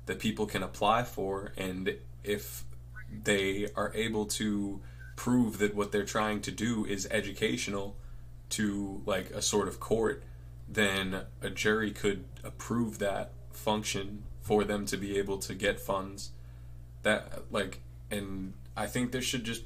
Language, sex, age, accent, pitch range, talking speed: English, male, 20-39, American, 95-115 Hz, 150 wpm